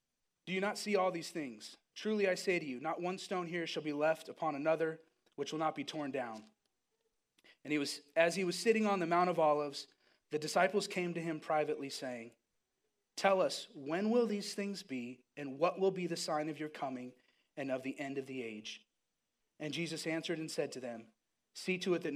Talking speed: 215 wpm